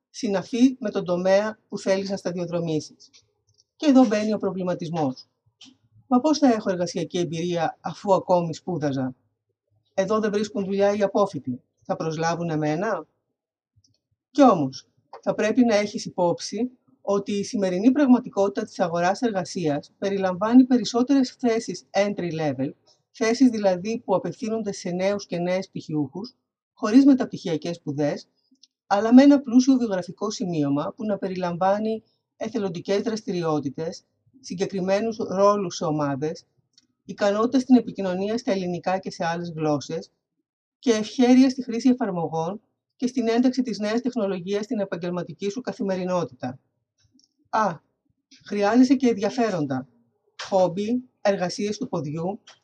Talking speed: 125 wpm